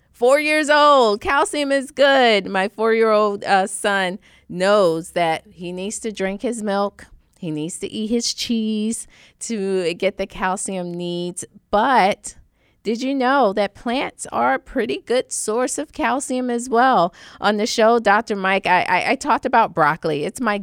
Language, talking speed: English, 165 wpm